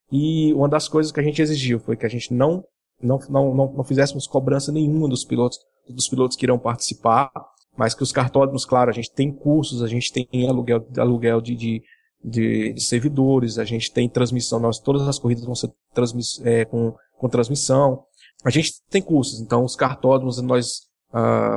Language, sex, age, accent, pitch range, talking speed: Portuguese, male, 20-39, Brazilian, 120-140 Hz, 175 wpm